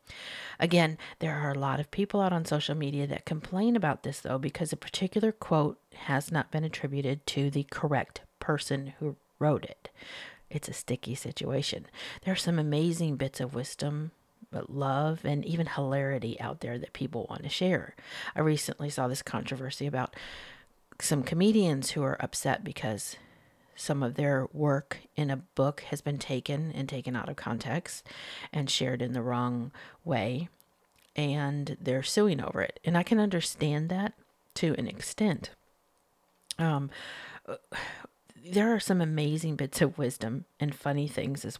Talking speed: 160 wpm